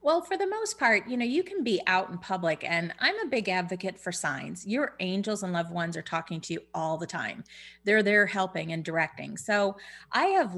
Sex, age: female, 30-49